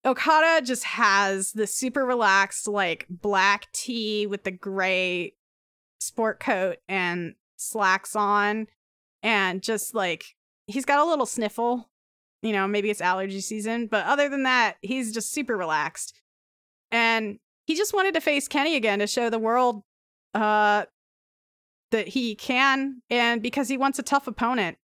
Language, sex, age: English, female, 20-39